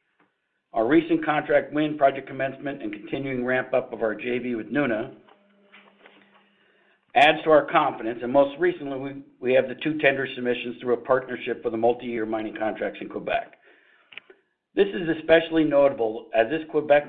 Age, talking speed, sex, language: 60-79, 160 wpm, male, English